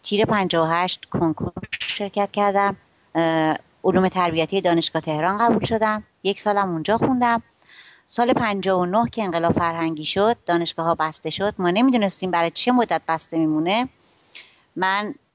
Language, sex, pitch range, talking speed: Persian, female, 165-210 Hz, 145 wpm